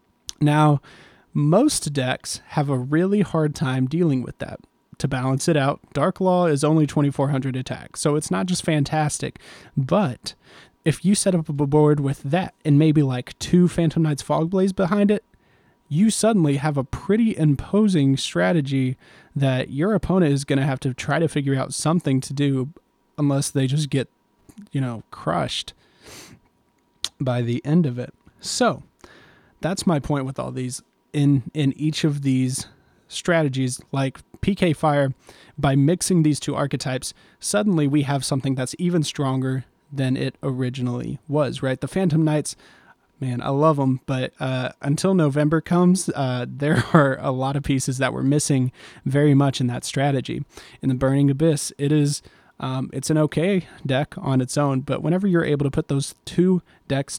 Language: English